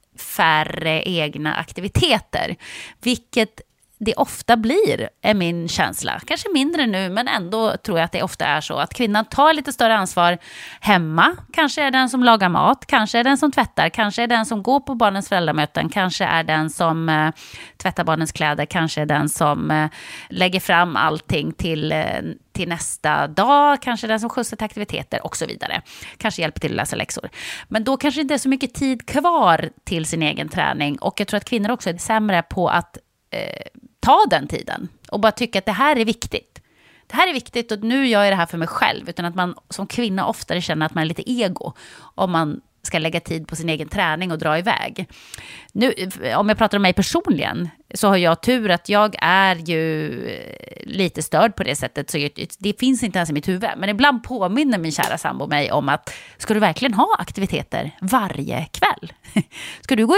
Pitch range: 165-240 Hz